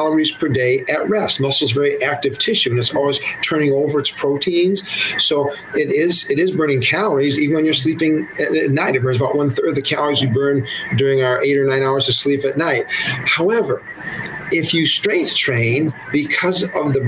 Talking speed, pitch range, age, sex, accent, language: 205 wpm, 135-170 Hz, 50-69, male, American, English